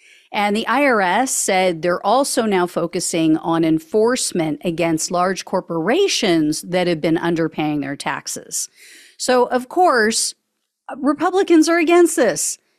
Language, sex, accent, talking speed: English, female, American, 120 wpm